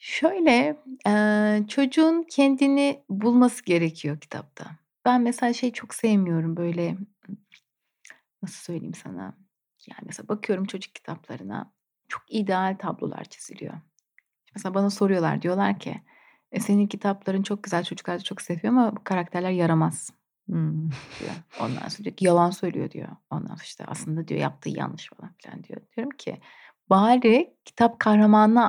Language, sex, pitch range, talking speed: Turkish, female, 185-245 Hz, 140 wpm